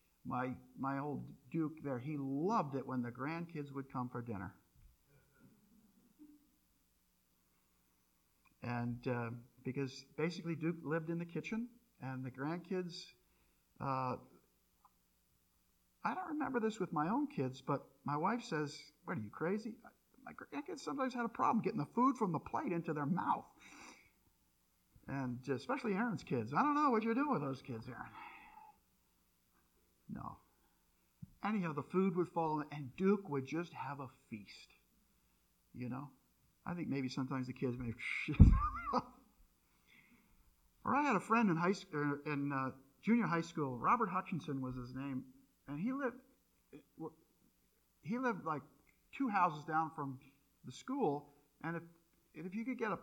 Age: 50-69